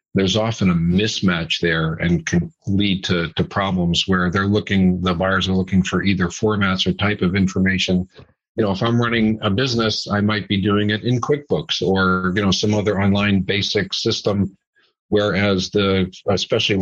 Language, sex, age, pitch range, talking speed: English, male, 50-69, 90-105 Hz, 180 wpm